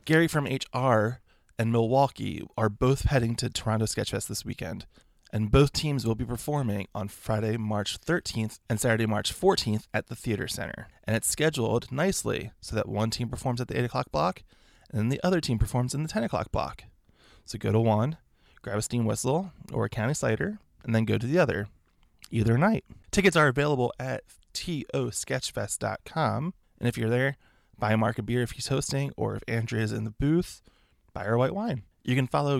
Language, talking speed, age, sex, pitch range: English, 195 wpm, 20-39, male, 105-130 Hz